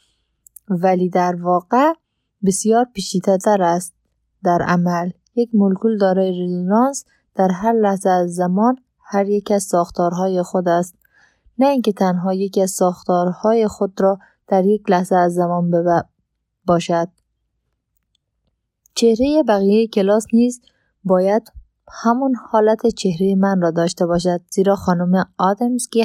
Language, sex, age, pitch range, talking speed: Persian, female, 20-39, 180-220 Hz, 120 wpm